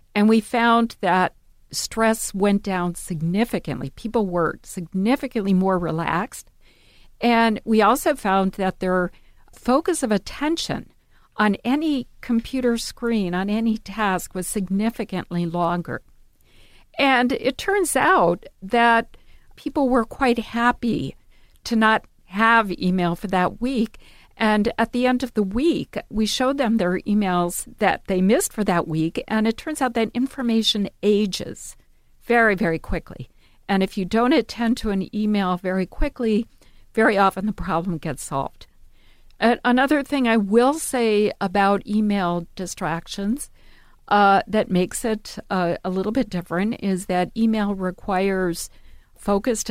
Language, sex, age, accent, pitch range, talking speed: English, female, 50-69, American, 185-235 Hz, 140 wpm